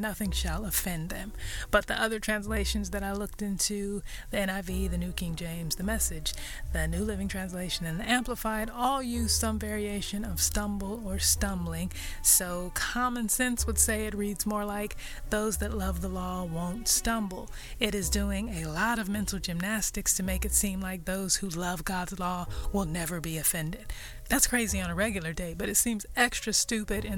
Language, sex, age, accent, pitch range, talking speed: English, female, 20-39, American, 180-220 Hz, 190 wpm